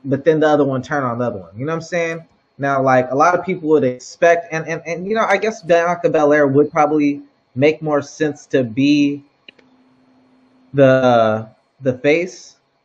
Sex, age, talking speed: male, 20-39, 195 wpm